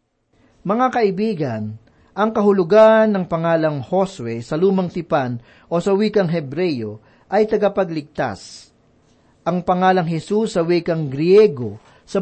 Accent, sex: native, male